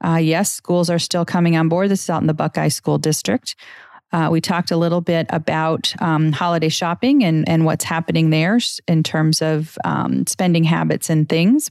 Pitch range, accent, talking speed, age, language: 160-175 Hz, American, 200 wpm, 40-59, English